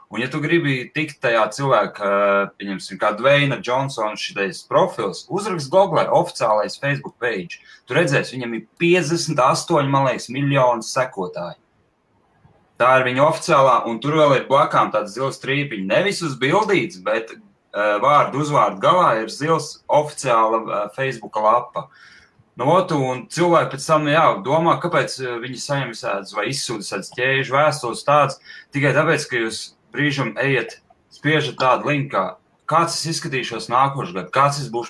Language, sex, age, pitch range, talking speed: English, male, 20-39, 115-155 Hz, 145 wpm